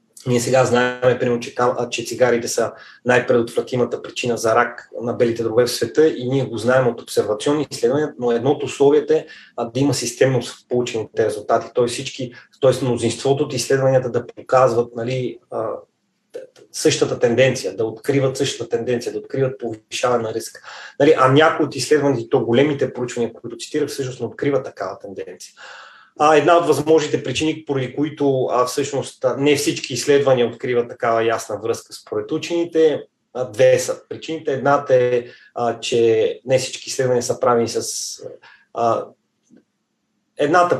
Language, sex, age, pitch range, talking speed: Bulgarian, male, 30-49, 125-170 Hz, 150 wpm